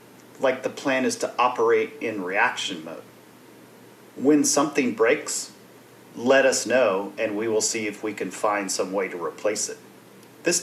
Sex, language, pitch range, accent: male, English, 110-160 Hz, American